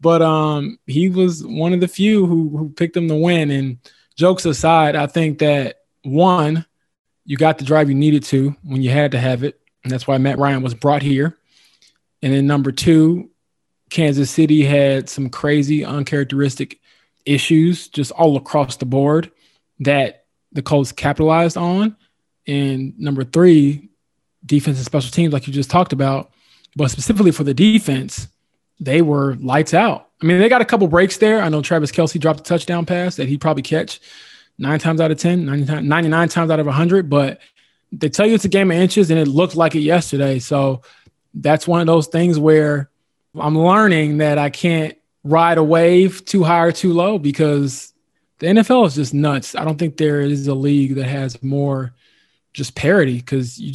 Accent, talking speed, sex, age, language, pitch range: American, 190 wpm, male, 20-39, English, 140-170 Hz